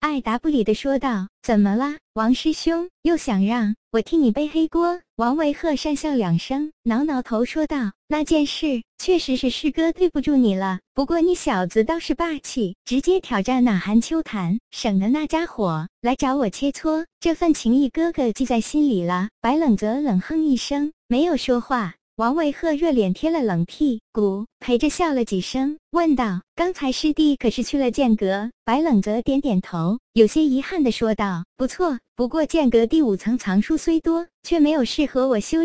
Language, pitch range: Chinese, 225-310 Hz